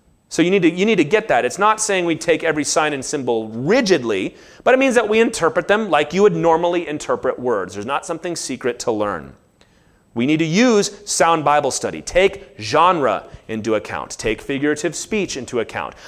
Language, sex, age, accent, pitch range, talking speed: English, male, 30-49, American, 150-220 Hz, 195 wpm